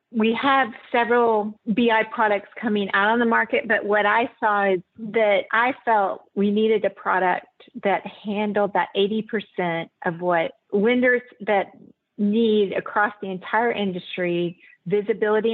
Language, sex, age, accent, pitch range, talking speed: English, female, 40-59, American, 180-220 Hz, 140 wpm